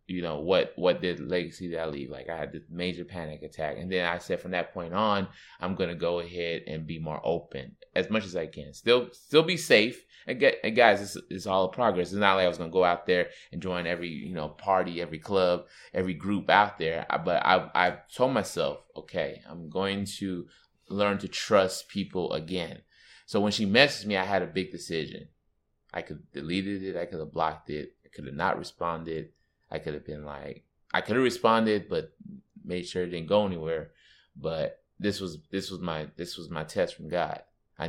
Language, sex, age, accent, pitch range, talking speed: English, male, 20-39, American, 85-115 Hz, 225 wpm